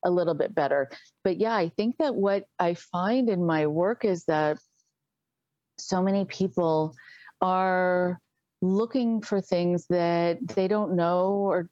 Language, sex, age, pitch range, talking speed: English, female, 40-59, 165-195 Hz, 150 wpm